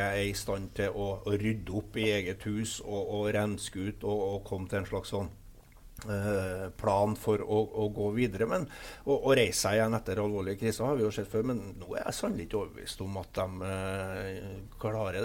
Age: 60-79